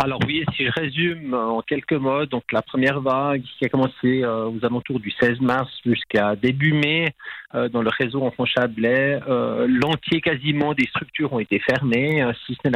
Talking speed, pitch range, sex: 195 wpm, 125-155 Hz, male